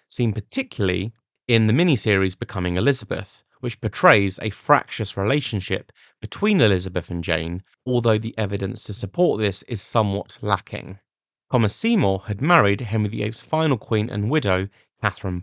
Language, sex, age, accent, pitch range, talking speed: English, male, 30-49, British, 100-125 Hz, 140 wpm